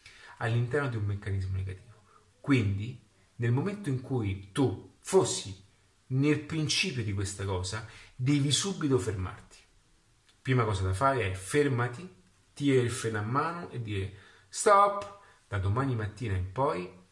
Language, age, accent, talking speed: Italian, 30-49, native, 135 wpm